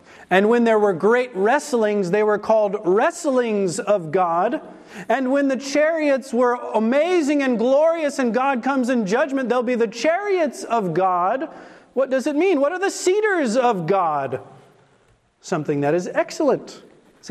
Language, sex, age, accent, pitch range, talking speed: English, male, 40-59, American, 205-295 Hz, 160 wpm